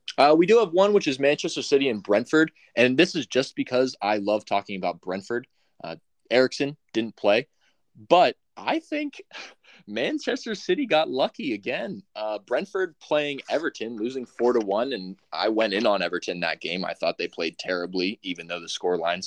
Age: 20-39